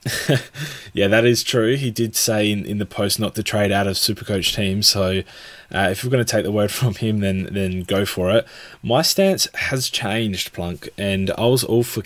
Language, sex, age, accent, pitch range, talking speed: English, male, 20-39, Australian, 95-115 Hz, 220 wpm